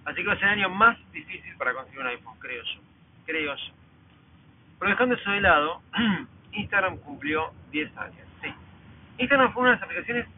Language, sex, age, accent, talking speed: Spanish, male, 40-59, Argentinian, 190 wpm